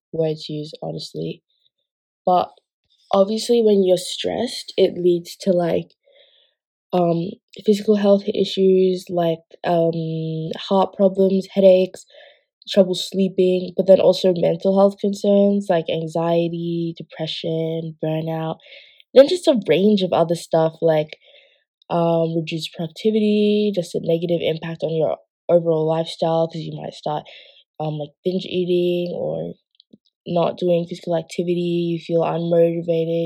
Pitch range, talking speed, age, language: 170-200 Hz, 125 wpm, 20-39, English